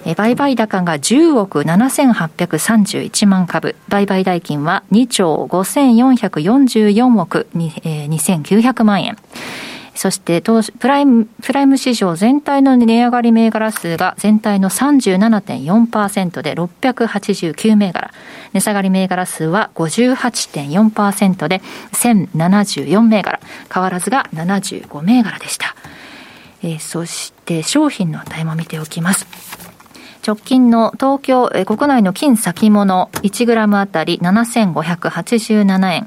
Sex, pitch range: female, 175-230 Hz